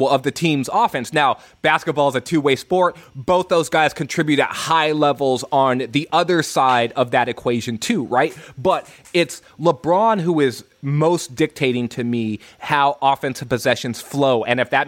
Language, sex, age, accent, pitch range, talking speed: English, male, 20-39, American, 110-145 Hz, 170 wpm